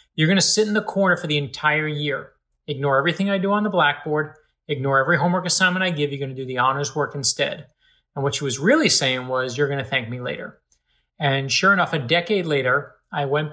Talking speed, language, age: 235 wpm, English, 30-49